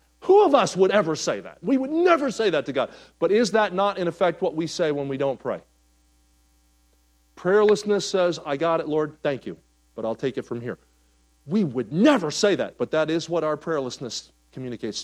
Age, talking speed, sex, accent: 40-59, 210 wpm, male, American